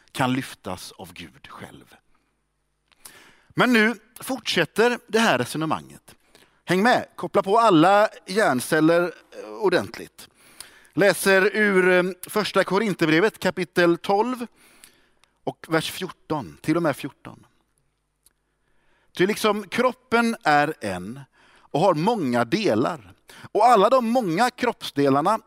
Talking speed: 105 wpm